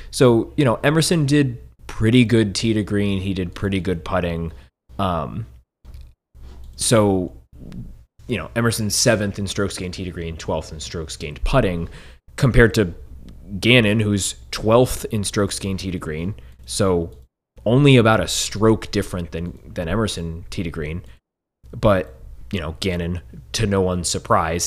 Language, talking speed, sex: English, 155 wpm, male